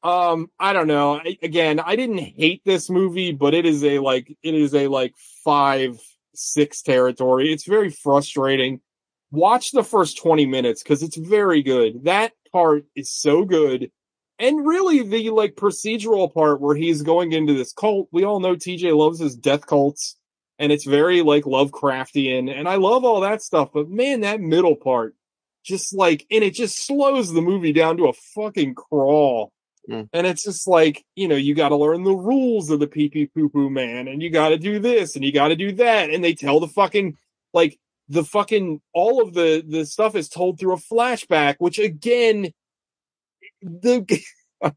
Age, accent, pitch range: 30-49, American, 150-215 Hz